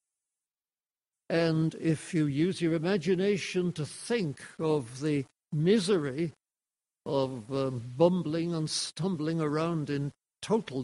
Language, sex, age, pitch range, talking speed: English, male, 60-79, 145-190 Hz, 105 wpm